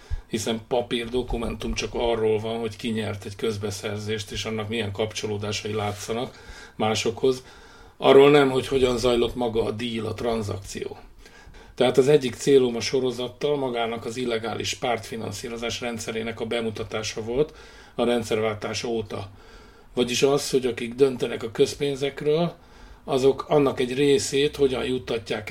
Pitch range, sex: 115-135 Hz, male